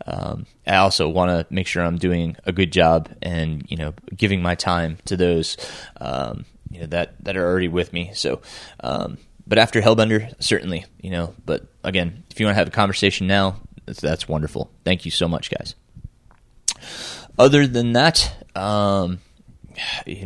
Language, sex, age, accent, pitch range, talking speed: English, male, 20-39, American, 90-115 Hz, 180 wpm